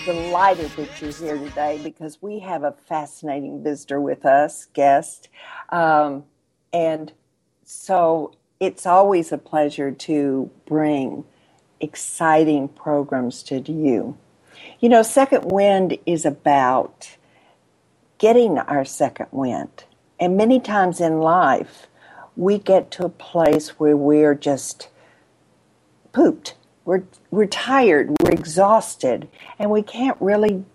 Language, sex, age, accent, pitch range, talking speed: English, female, 50-69, American, 150-200 Hz, 115 wpm